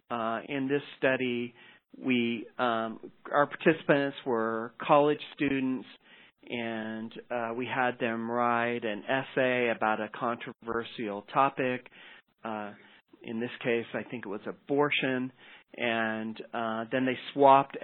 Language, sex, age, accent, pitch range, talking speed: English, male, 40-59, American, 115-140 Hz, 125 wpm